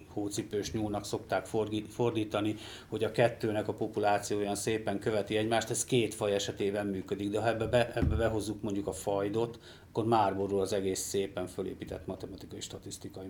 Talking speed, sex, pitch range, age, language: 160 wpm, male, 95-110 Hz, 40-59, Hungarian